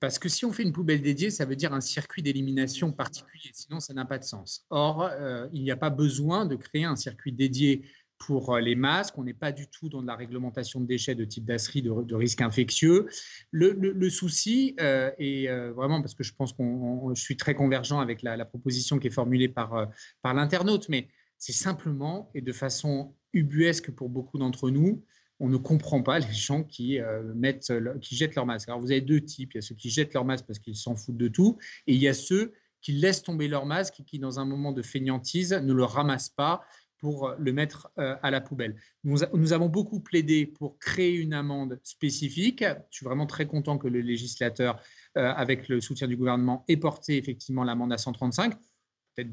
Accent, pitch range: French, 125-155 Hz